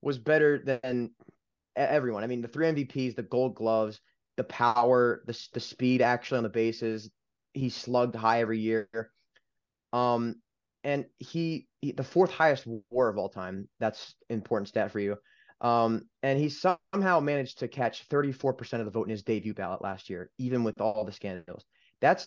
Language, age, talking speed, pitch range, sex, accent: English, 20-39, 175 wpm, 110-130 Hz, male, American